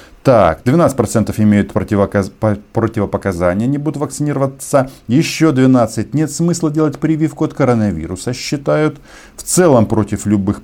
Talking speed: 120 wpm